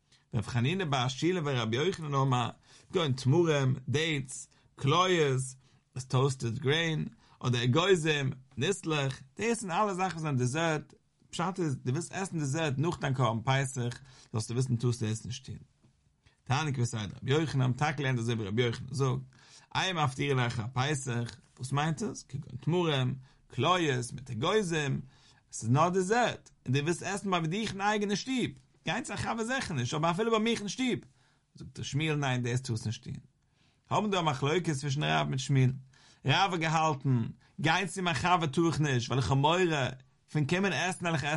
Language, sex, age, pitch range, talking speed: English, male, 50-69, 125-160 Hz, 80 wpm